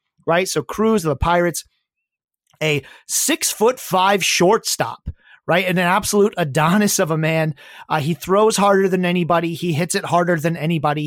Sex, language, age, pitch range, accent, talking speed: male, English, 30-49, 160-205 Hz, American, 170 wpm